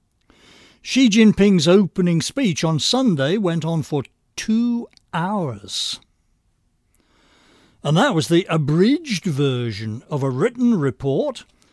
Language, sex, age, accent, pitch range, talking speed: English, male, 60-79, British, 125-185 Hz, 105 wpm